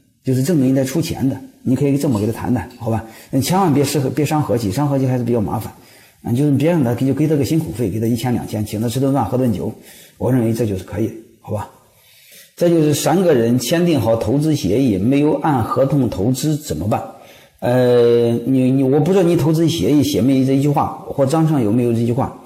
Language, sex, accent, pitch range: Chinese, male, native, 115-150 Hz